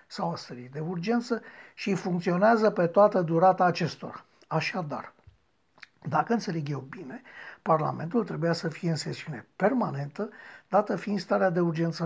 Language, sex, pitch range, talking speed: Romanian, male, 160-215 Hz, 135 wpm